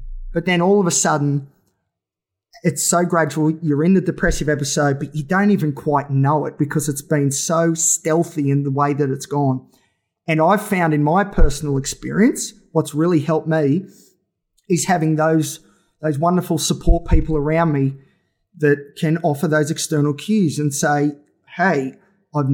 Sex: male